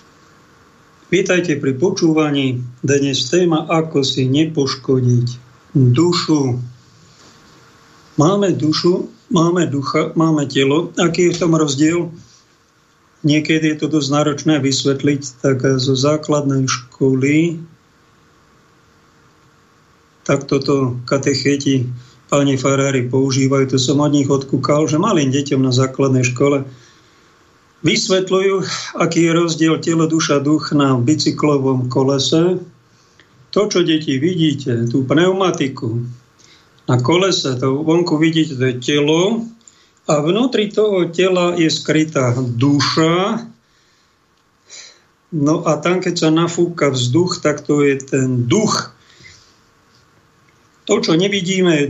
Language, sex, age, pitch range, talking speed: Slovak, male, 50-69, 135-165 Hz, 105 wpm